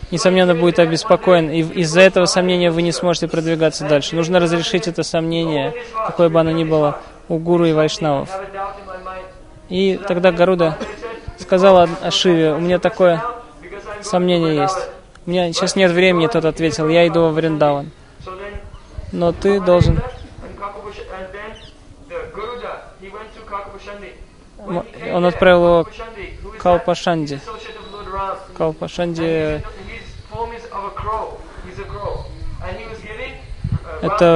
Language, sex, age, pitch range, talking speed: Russian, male, 20-39, 165-200 Hz, 100 wpm